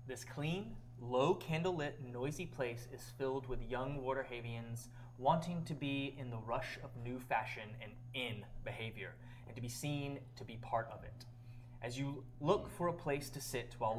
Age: 20-39